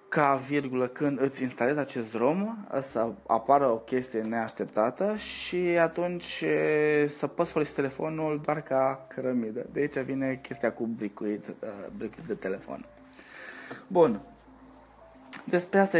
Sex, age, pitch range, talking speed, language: male, 20-39, 115-160 Hz, 120 wpm, Romanian